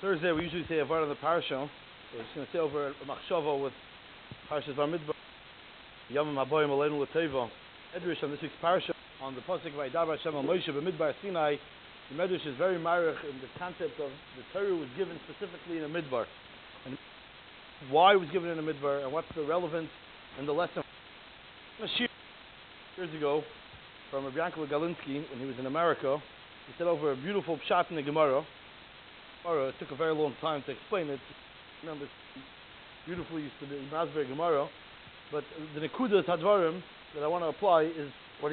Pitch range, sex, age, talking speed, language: 145-180 Hz, male, 30-49, 185 wpm, English